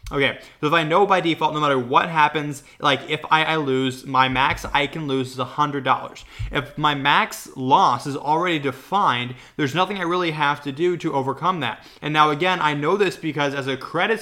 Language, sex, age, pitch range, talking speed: English, male, 20-39, 130-165 Hz, 205 wpm